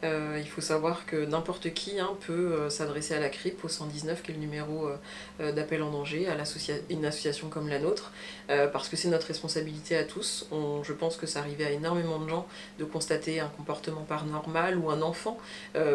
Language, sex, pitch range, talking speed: French, female, 150-180 Hz, 215 wpm